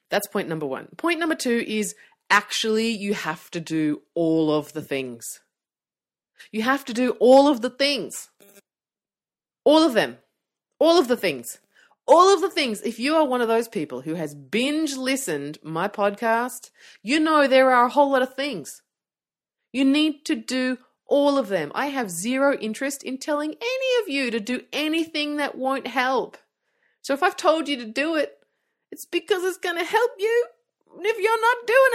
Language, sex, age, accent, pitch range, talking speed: English, female, 30-49, Australian, 205-310 Hz, 185 wpm